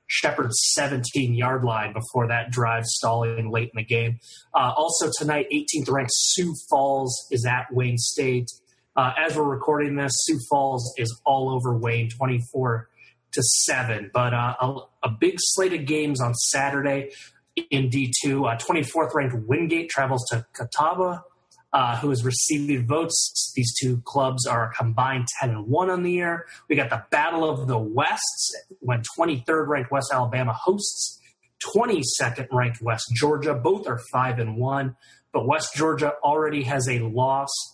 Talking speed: 160 wpm